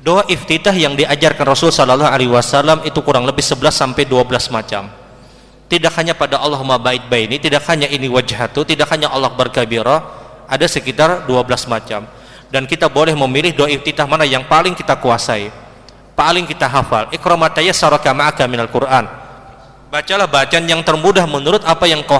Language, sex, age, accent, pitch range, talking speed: Indonesian, male, 30-49, native, 125-160 Hz, 160 wpm